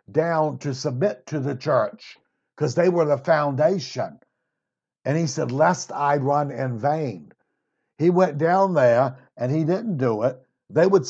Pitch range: 140-175 Hz